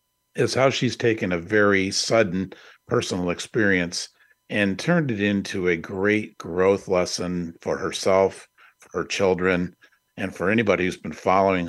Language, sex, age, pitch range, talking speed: English, male, 50-69, 85-100 Hz, 145 wpm